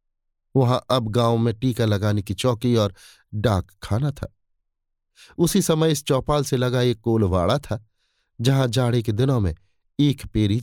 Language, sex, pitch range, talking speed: Hindi, male, 95-130 Hz, 160 wpm